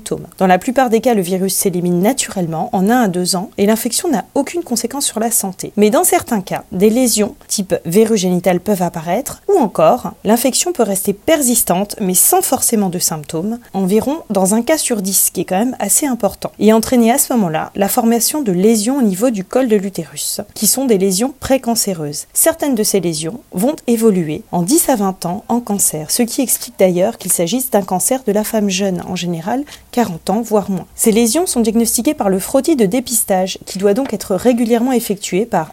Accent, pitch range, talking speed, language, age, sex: French, 190-245 Hz, 210 wpm, French, 30-49, female